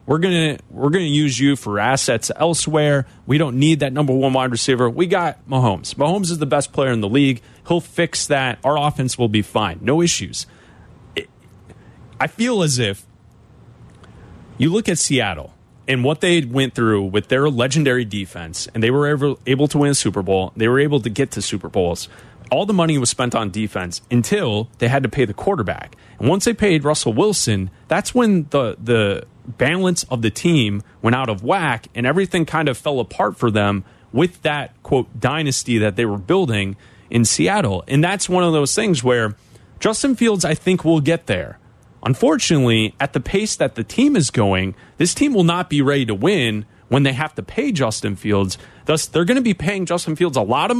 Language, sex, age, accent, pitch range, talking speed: English, male, 30-49, American, 115-160 Hz, 205 wpm